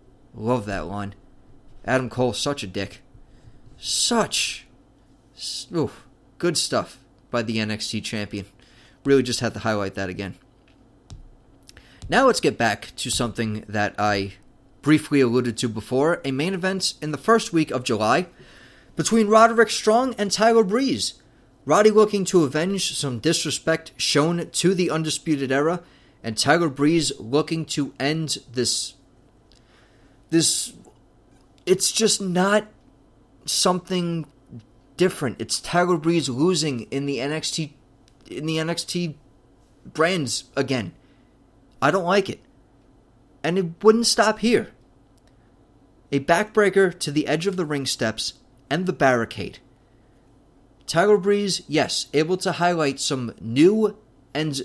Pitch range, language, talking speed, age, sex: 120-170 Hz, English, 125 wpm, 30-49, male